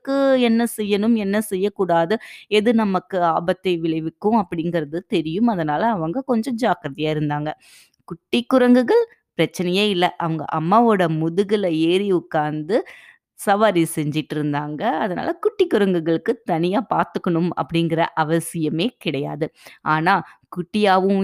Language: Tamil